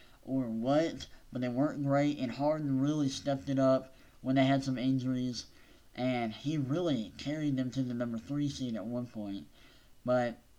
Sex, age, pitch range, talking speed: male, 20-39, 120-140 Hz, 175 wpm